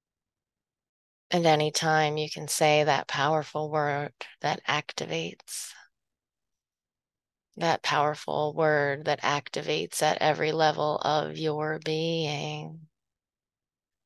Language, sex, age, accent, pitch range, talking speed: English, female, 20-39, American, 145-165 Hz, 95 wpm